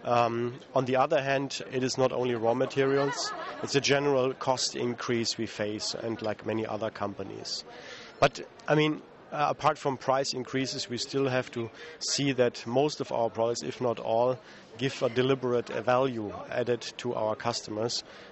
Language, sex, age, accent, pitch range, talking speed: English, male, 30-49, German, 120-140 Hz, 170 wpm